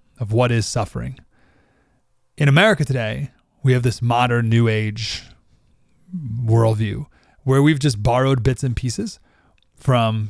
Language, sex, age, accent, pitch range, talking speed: English, male, 30-49, American, 120-165 Hz, 130 wpm